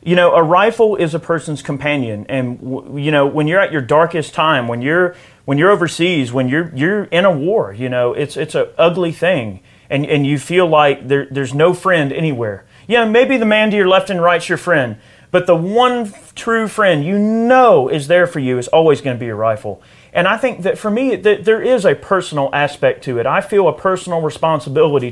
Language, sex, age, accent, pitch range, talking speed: English, male, 30-49, American, 135-185 Hz, 225 wpm